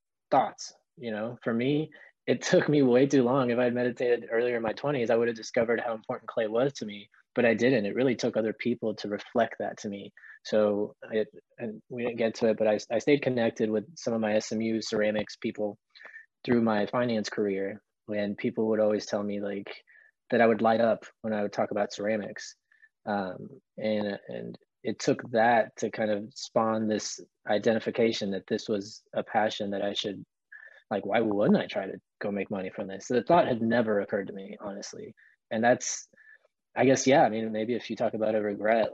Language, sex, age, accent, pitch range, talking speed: English, male, 20-39, American, 105-120 Hz, 215 wpm